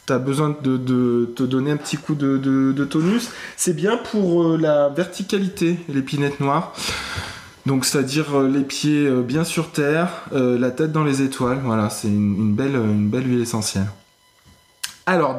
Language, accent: French, French